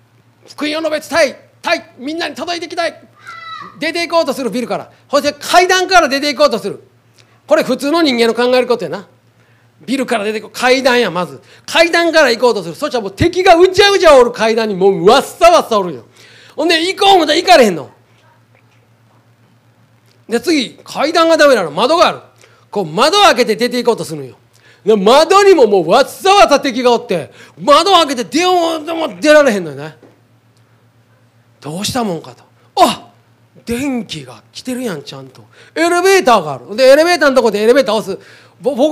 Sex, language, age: male, Japanese, 40-59